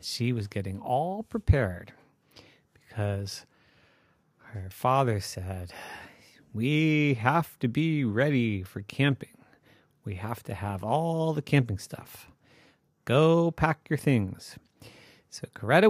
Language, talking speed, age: English, 115 wpm, 40-59